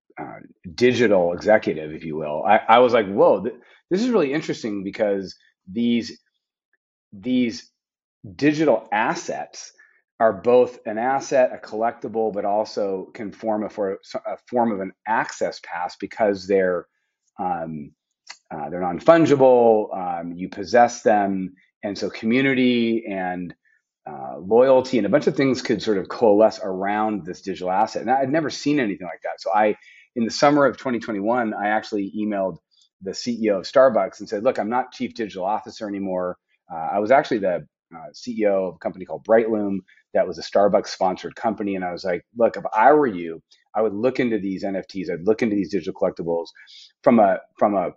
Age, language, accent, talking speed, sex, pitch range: 30-49, English, American, 170 wpm, male, 95-125 Hz